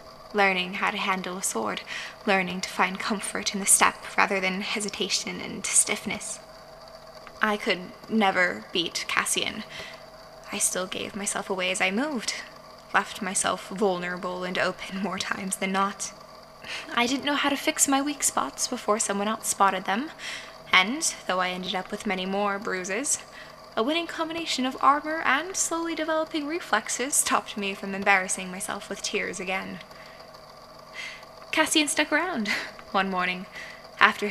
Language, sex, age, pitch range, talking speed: English, female, 10-29, 190-240 Hz, 150 wpm